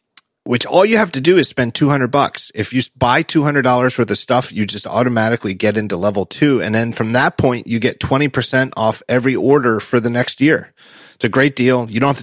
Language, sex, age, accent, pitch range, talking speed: English, male, 30-49, American, 115-140 Hz, 225 wpm